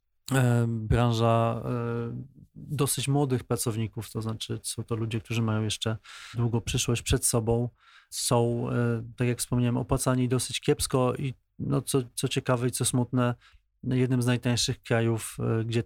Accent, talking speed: native, 140 wpm